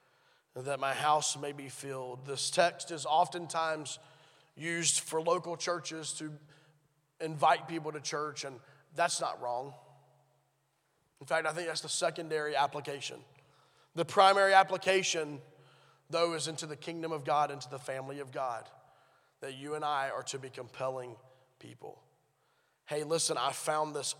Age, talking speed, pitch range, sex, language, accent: 20-39, 150 wpm, 140-175 Hz, male, English, American